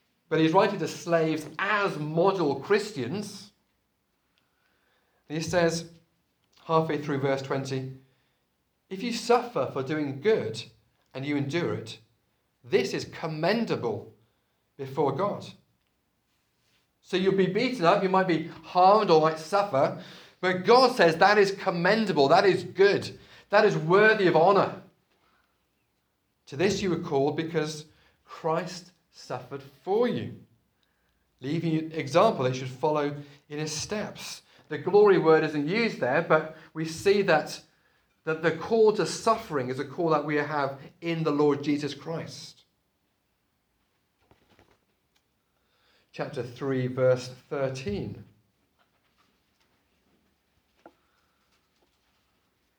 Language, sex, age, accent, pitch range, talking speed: English, male, 30-49, British, 140-185 Hz, 120 wpm